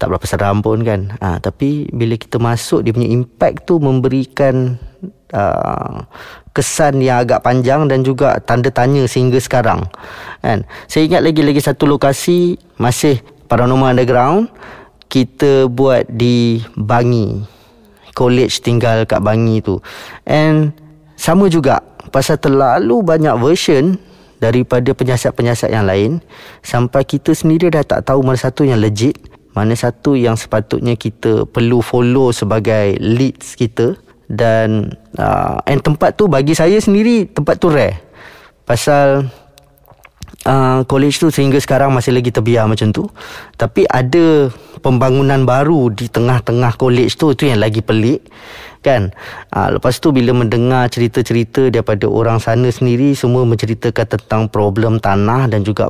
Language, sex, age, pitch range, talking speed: Indonesian, male, 20-39, 115-140 Hz, 135 wpm